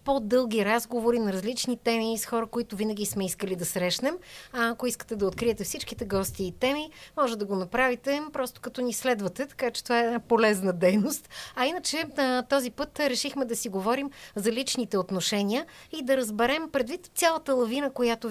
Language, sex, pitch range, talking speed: Bulgarian, female, 205-255 Hz, 175 wpm